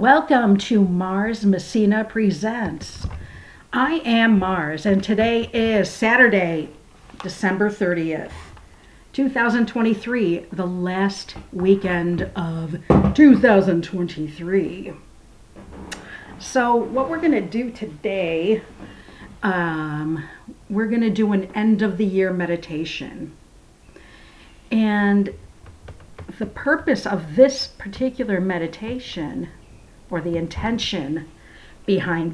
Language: English